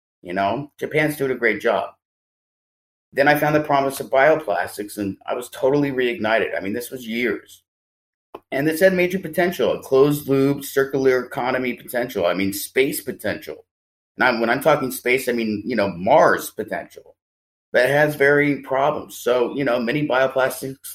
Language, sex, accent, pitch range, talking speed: English, male, American, 115-140 Hz, 170 wpm